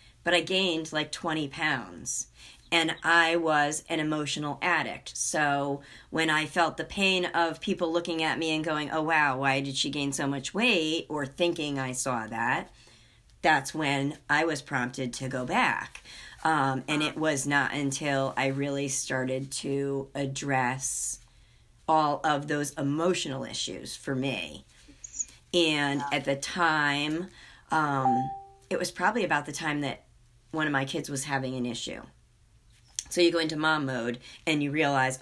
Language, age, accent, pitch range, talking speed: English, 40-59, American, 135-160 Hz, 160 wpm